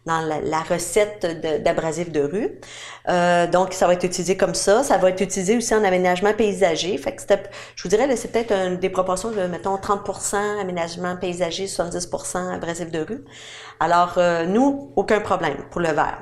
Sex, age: female, 40-59